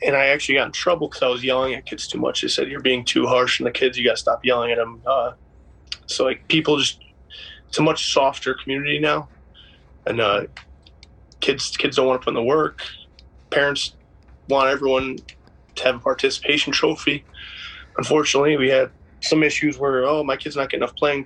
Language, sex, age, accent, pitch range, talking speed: English, male, 20-39, American, 115-140 Hz, 205 wpm